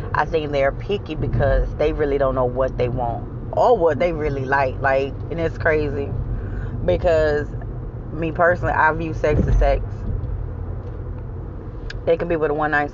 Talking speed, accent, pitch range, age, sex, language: 160 wpm, American, 115-150 Hz, 30-49, female, English